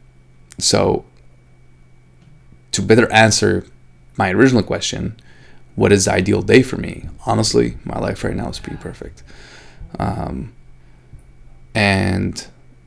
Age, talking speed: 20-39, 110 wpm